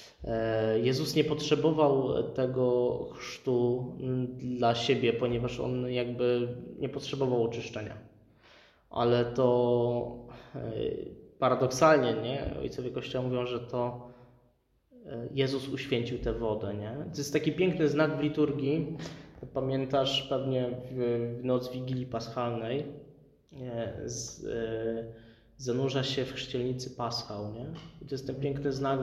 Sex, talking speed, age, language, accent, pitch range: male, 105 wpm, 20-39, Polish, native, 120-135 Hz